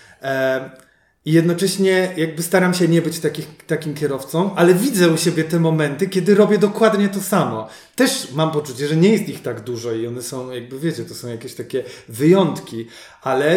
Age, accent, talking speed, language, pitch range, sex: 30-49, native, 175 wpm, Polish, 140-180 Hz, male